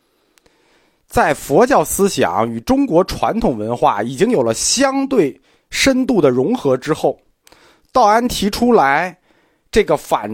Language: Chinese